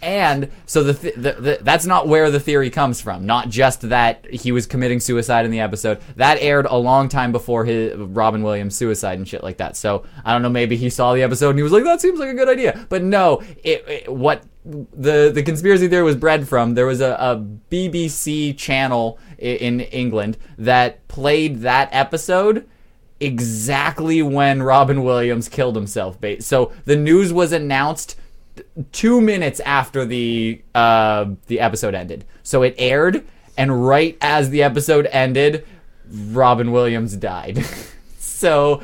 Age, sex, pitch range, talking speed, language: 20-39, male, 120-150 Hz, 175 wpm, English